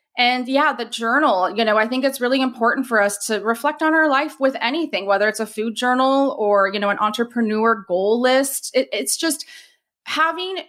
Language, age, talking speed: English, 30-49, 195 wpm